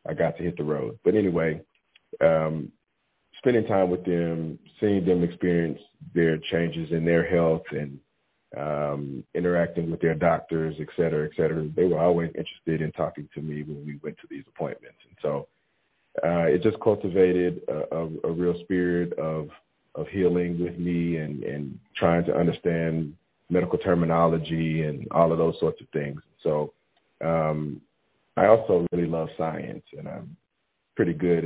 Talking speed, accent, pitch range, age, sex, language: 165 wpm, American, 75-85 Hz, 40-59, male, English